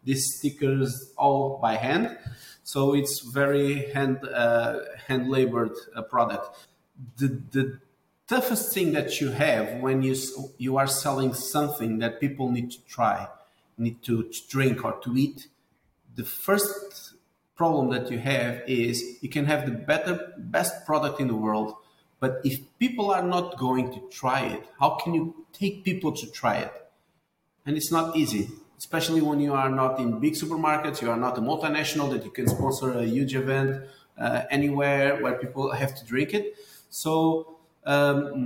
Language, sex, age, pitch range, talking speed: English, male, 40-59, 125-155 Hz, 165 wpm